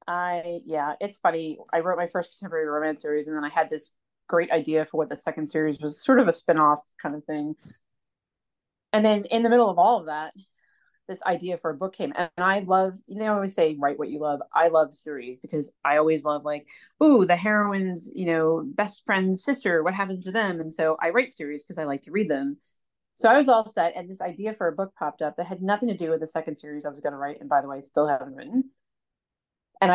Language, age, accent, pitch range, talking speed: English, 30-49, American, 150-205 Hz, 250 wpm